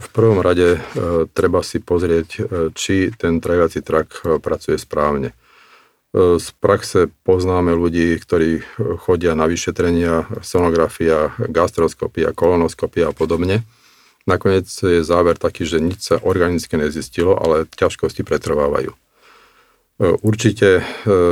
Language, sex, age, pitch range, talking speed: Slovak, male, 50-69, 85-115 Hz, 105 wpm